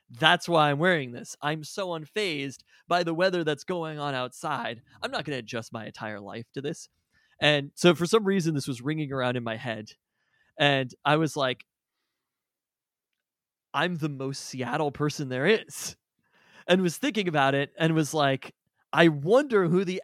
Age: 20-39